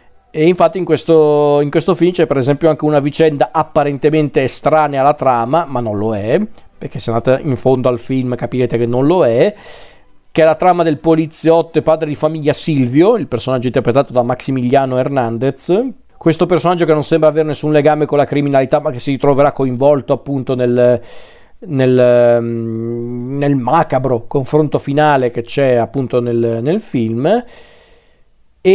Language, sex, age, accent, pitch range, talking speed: Italian, male, 40-59, native, 125-155 Hz, 165 wpm